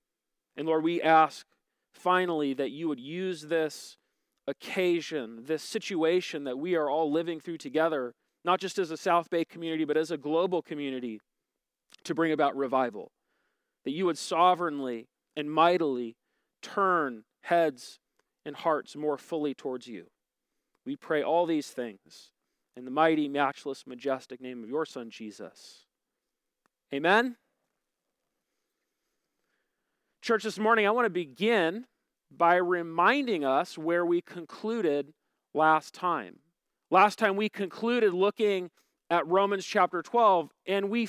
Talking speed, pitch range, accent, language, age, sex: 135 wpm, 155-210 Hz, American, English, 40-59, male